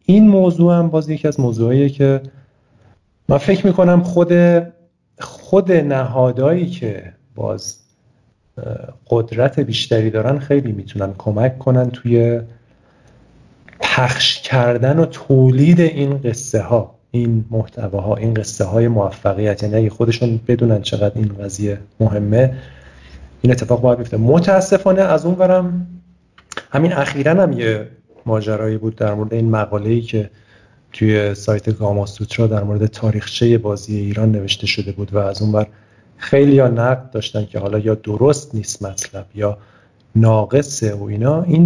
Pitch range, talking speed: 110-145 Hz, 135 wpm